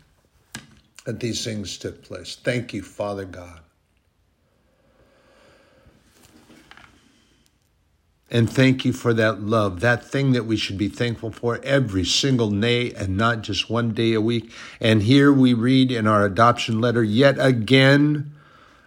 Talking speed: 135 wpm